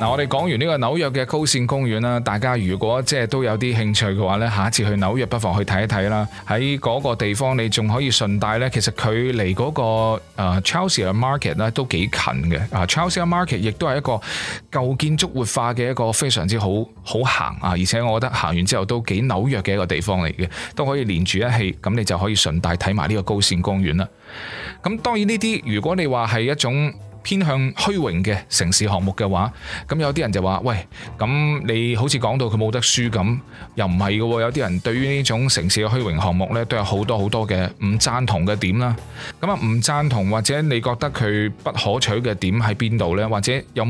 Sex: male